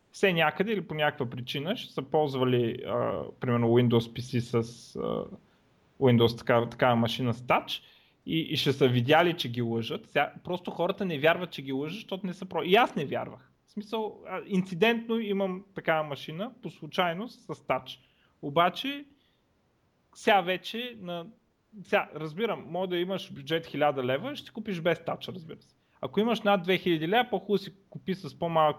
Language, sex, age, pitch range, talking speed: Bulgarian, male, 30-49, 135-190 Hz, 175 wpm